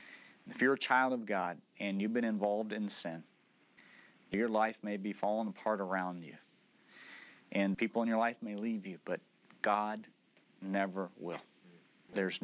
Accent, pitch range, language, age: American, 100-115 Hz, English, 40-59